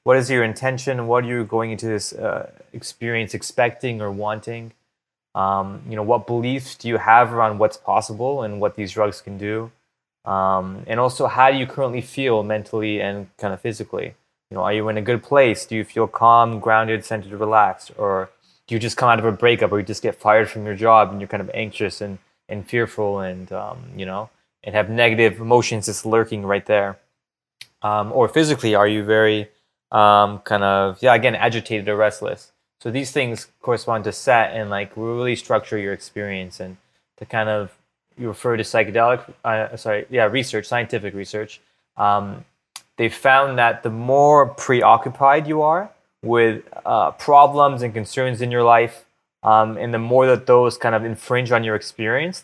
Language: English